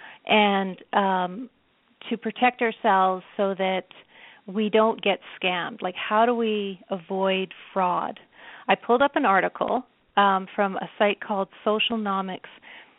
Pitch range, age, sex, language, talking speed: 185-215 Hz, 40-59, female, English, 130 wpm